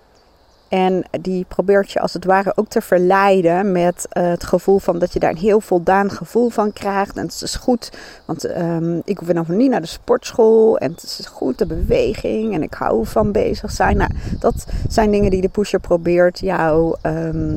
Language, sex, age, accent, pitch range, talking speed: Dutch, female, 40-59, Dutch, 170-220 Hz, 200 wpm